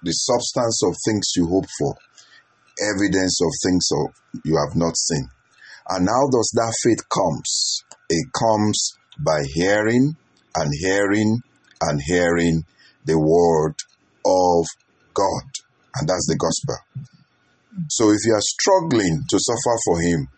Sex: male